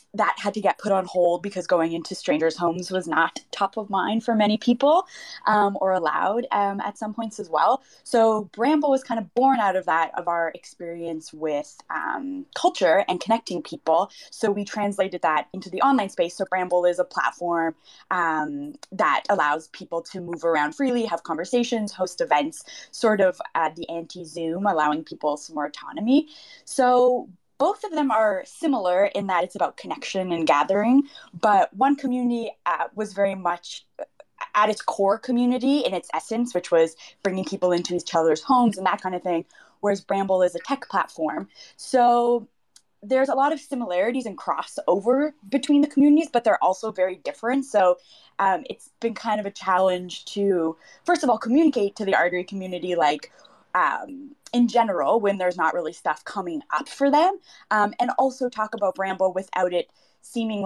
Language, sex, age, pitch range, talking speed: English, female, 20-39, 180-250 Hz, 180 wpm